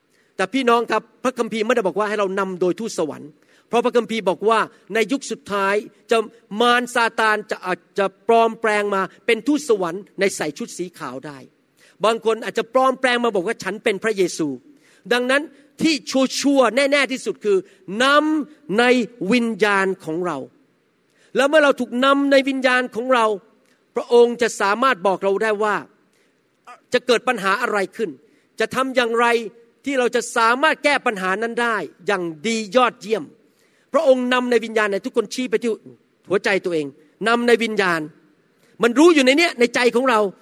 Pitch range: 205-250 Hz